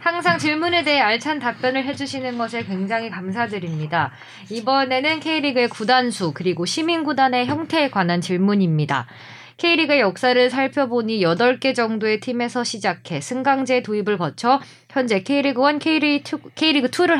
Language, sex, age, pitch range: Korean, female, 20-39, 195-275 Hz